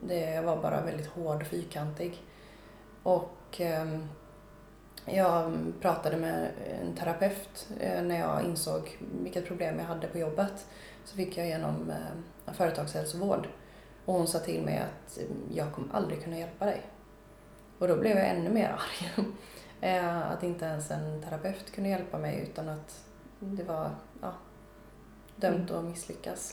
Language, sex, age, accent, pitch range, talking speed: Swedish, female, 20-39, native, 165-190 Hz, 140 wpm